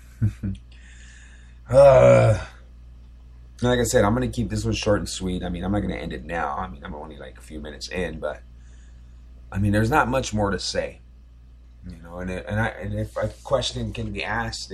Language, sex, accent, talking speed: English, male, American, 215 wpm